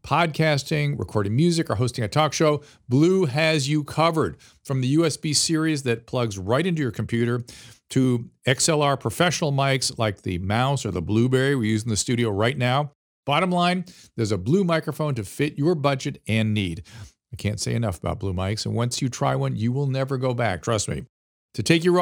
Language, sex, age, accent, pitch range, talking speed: English, male, 50-69, American, 110-150 Hz, 200 wpm